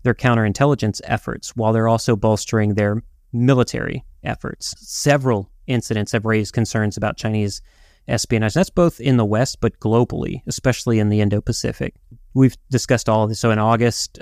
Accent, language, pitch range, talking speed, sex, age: American, English, 110-130 Hz, 155 wpm, male, 30-49